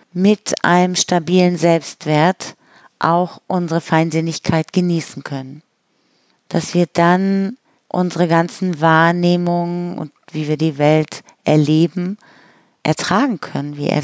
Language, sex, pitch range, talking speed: German, female, 165-195 Hz, 105 wpm